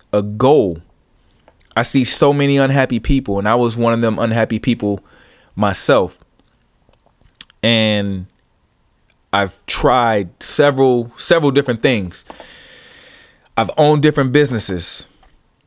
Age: 30-49